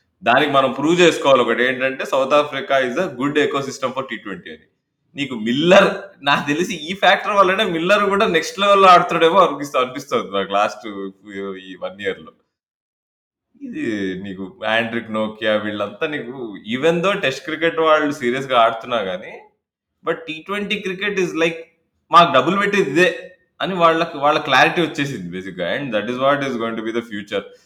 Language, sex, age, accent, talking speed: Telugu, male, 20-39, native, 155 wpm